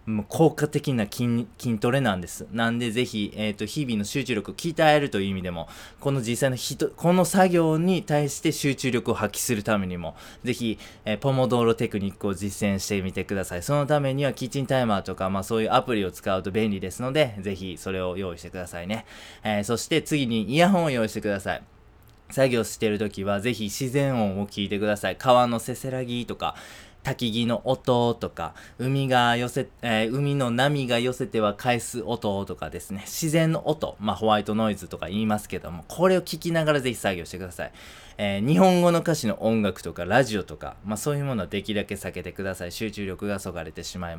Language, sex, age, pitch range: Japanese, male, 20-39, 100-130 Hz